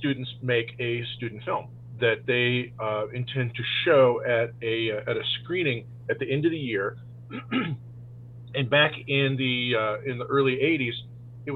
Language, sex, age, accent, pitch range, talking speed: English, male, 40-59, American, 120-135 Hz, 165 wpm